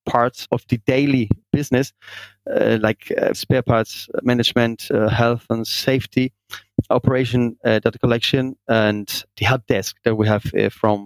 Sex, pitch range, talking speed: male, 110-125 Hz, 150 wpm